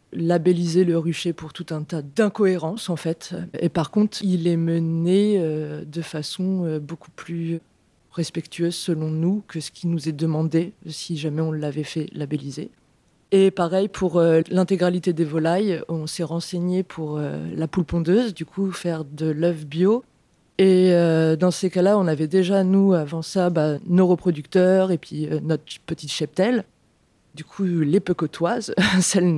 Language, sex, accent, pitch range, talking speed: French, female, French, 160-190 Hz, 175 wpm